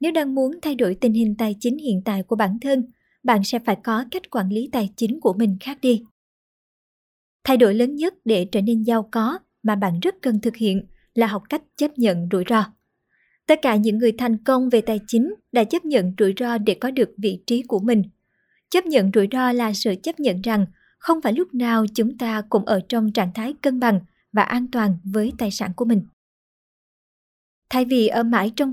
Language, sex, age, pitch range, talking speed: Vietnamese, male, 20-39, 215-260 Hz, 220 wpm